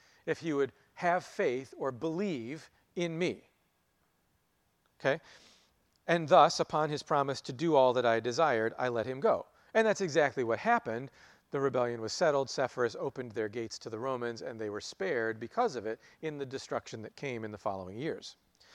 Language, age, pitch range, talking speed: English, 40-59, 125-180 Hz, 180 wpm